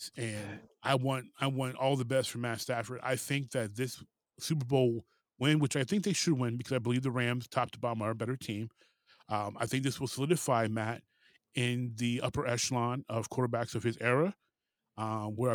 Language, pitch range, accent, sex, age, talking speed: English, 115-135 Hz, American, male, 30-49, 210 wpm